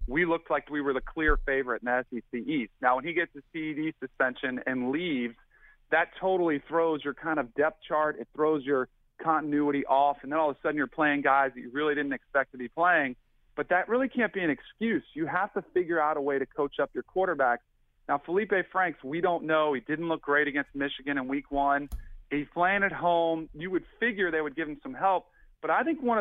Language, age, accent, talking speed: English, 40-59, American, 235 wpm